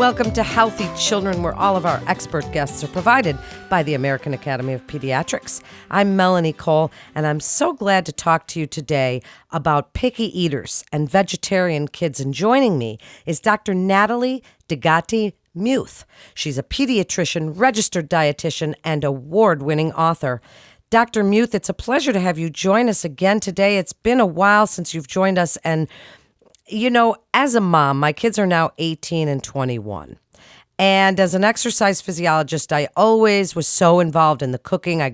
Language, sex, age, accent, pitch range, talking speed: English, female, 40-59, American, 150-205 Hz, 165 wpm